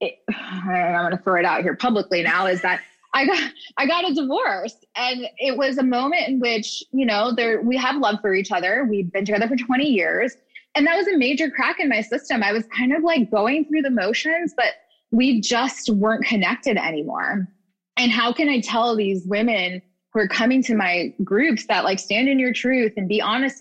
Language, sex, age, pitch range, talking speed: English, female, 20-39, 190-255 Hz, 220 wpm